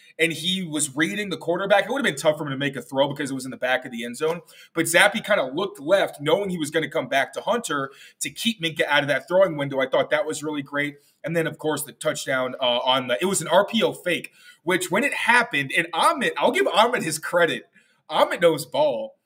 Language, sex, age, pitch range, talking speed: English, male, 20-39, 145-200 Hz, 270 wpm